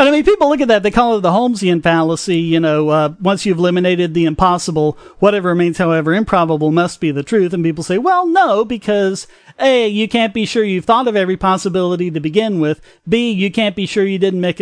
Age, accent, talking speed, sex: 40-59, American, 230 wpm, male